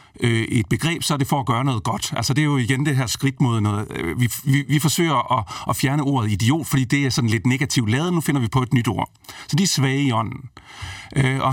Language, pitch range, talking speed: Danish, 115-150 Hz, 260 wpm